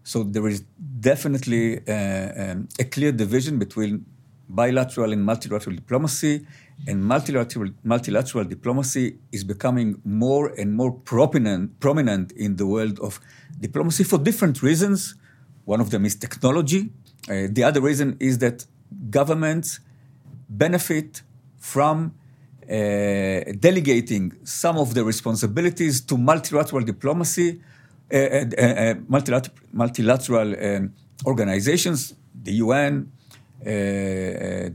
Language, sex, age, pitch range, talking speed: English, male, 50-69, 115-145 Hz, 115 wpm